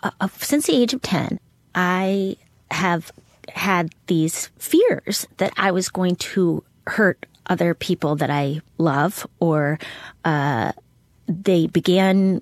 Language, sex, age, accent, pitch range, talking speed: English, female, 30-49, American, 155-195 Hz, 125 wpm